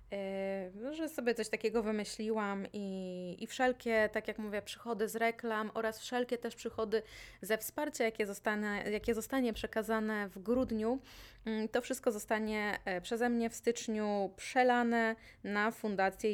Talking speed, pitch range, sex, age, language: 135 wpm, 200-230 Hz, female, 20-39, Polish